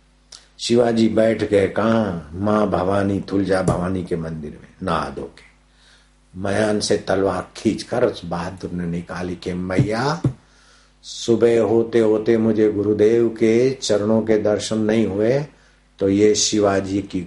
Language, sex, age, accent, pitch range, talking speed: Hindi, male, 60-79, native, 95-110 Hz, 140 wpm